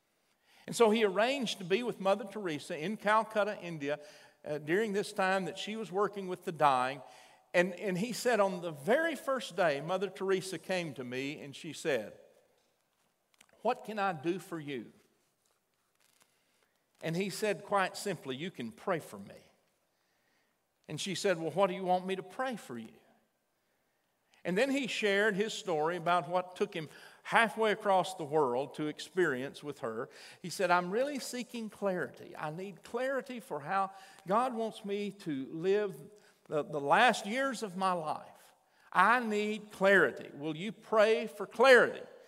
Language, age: English, 50-69